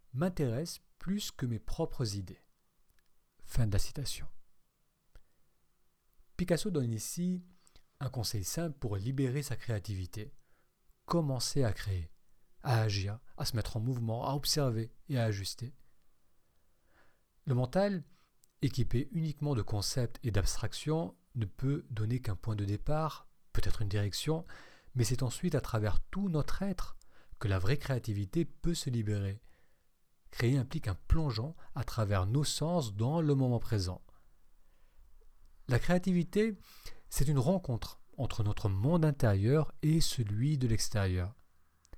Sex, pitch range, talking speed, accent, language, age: male, 105-155 Hz, 135 wpm, French, French, 40-59